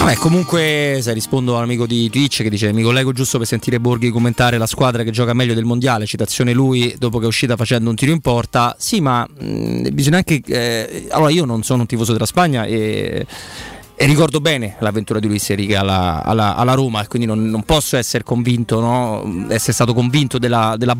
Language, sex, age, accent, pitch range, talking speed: Italian, male, 30-49, native, 110-130 Hz, 210 wpm